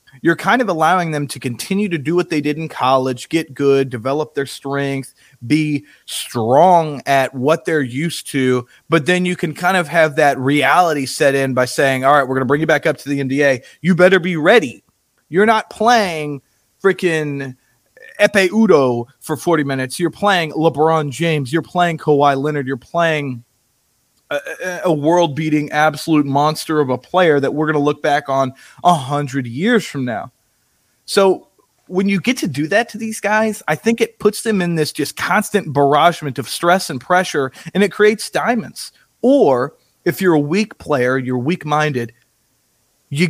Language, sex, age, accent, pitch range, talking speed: English, male, 30-49, American, 135-180 Hz, 180 wpm